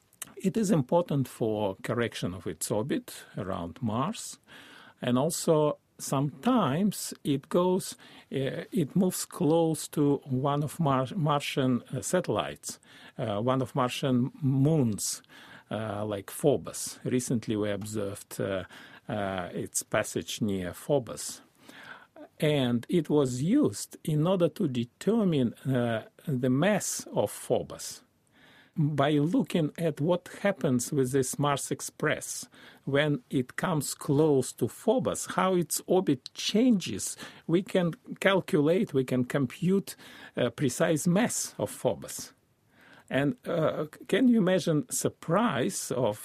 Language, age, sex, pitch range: English, 50-69, male, 125-170 Hz